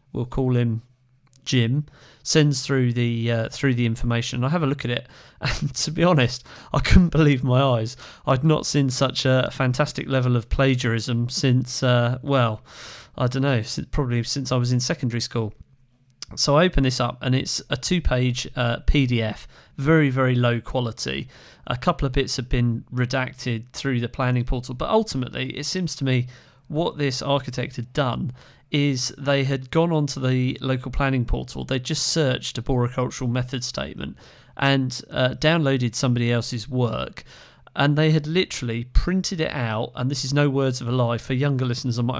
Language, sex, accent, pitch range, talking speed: English, male, British, 120-140 Hz, 180 wpm